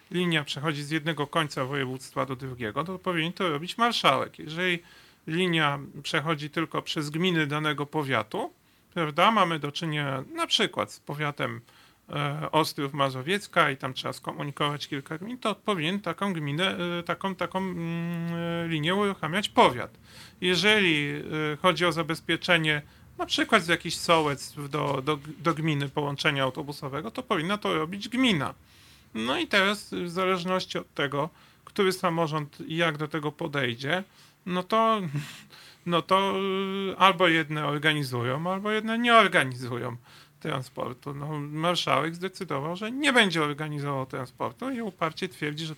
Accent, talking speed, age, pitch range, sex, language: native, 135 wpm, 30-49, 145-185 Hz, male, Polish